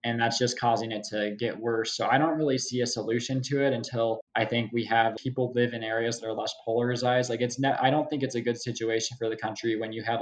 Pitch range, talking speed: 110-115 Hz, 265 wpm